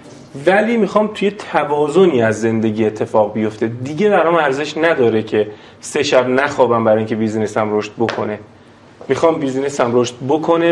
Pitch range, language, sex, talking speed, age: 115-155 Hz, Persian, male, 150 wpm, 30-49